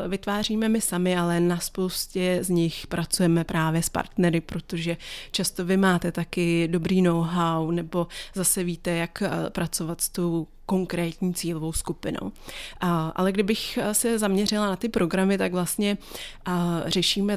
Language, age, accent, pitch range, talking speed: Czech, 30-49, native, 170-195 Hz, 135 wpm